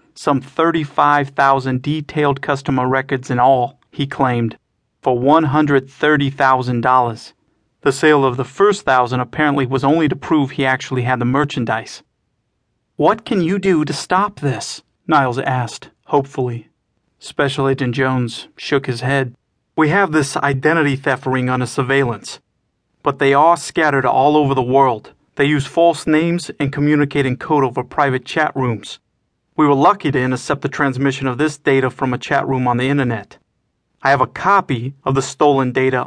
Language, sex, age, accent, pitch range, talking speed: English, male, 40-59, American, 130-145 Hz, 160 wpm